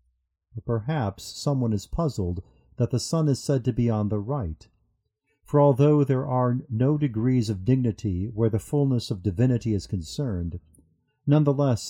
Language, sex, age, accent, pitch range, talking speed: English, male, 50-69, American, 100-130 Hz, 150 wpm